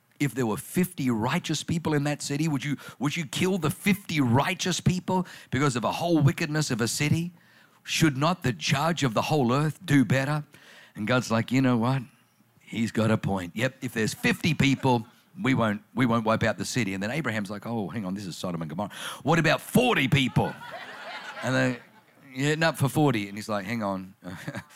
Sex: male